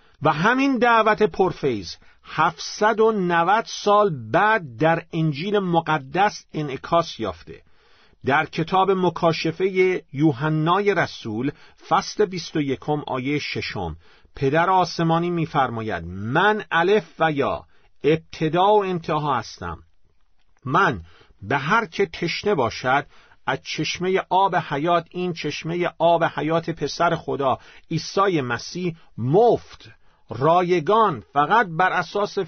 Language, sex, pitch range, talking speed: Persian, male, 135-185 Hz, 105 wpm